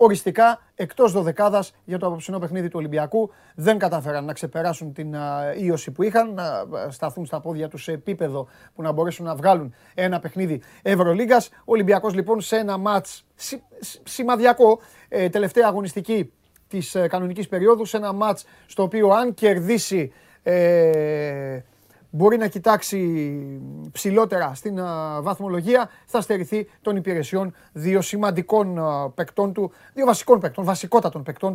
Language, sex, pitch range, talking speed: Greek, male, 160-210 Hz, 135 wpm